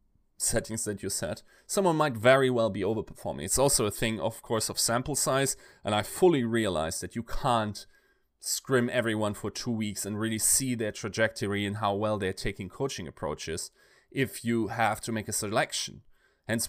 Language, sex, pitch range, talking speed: English, male, 105-125 Hz, 185 wpm